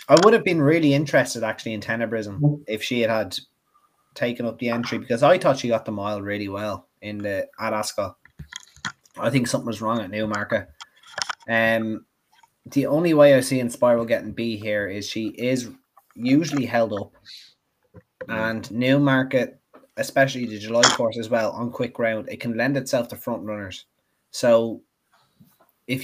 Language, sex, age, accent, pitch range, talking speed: English, male, 20-39, Irish, 110-135 Hz, 165 wpm